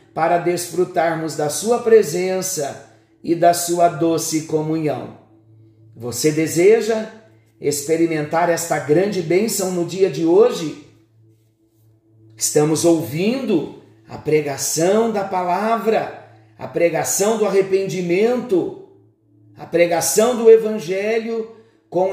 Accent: Brazilian